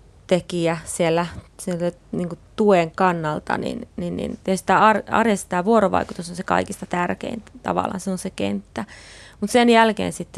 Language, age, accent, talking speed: Finnish, 20-39, native, 160 wpm